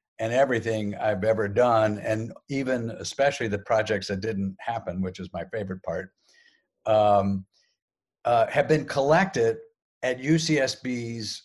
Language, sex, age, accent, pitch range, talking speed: English, male, 60-79, American, 105-125 Hz, 130 wpm